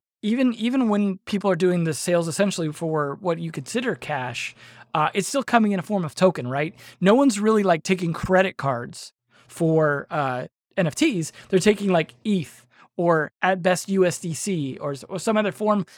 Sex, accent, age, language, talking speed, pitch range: male, American, 20-39, English, 175 wpm, 155-195 Hz